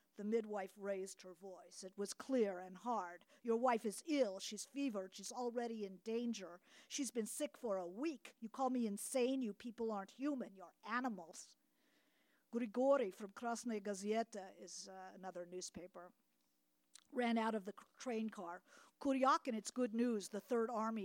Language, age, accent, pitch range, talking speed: English, 50-69, American, 190-245 Hz, 165 wpm